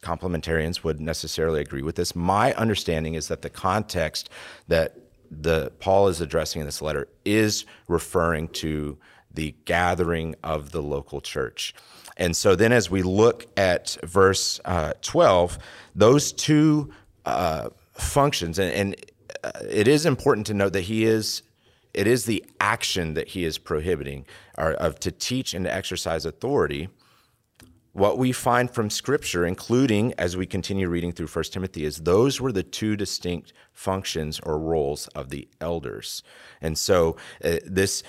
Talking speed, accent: 155 wpm, American